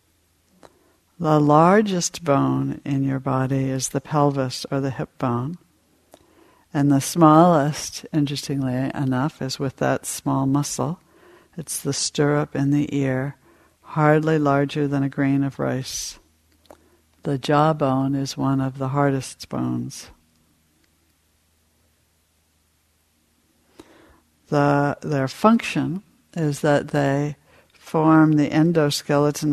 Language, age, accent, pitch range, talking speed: English, 60-79, American, 130-150 Hz, 110 wpm